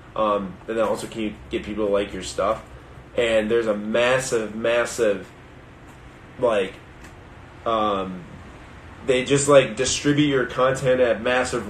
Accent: American